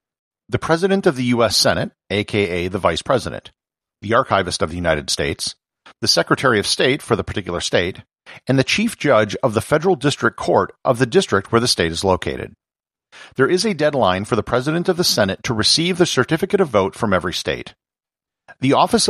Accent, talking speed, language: American, 195 wpm, English